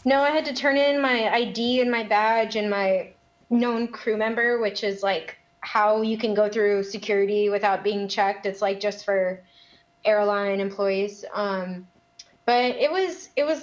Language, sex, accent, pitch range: English, female, American, 205-245 Hz